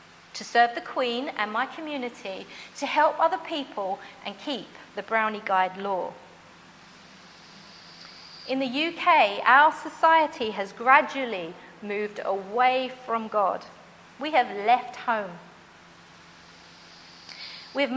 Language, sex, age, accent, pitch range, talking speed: English, female, 40-59, British, 235-340 Hz, 110 wpm